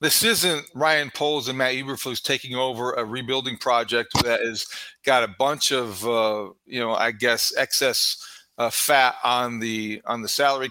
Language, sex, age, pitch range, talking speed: English, male, 40-59, 125-155 Hz, 175 wpm